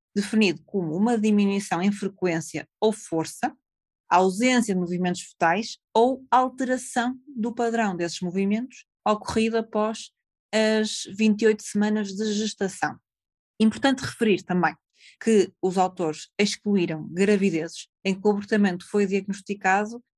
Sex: female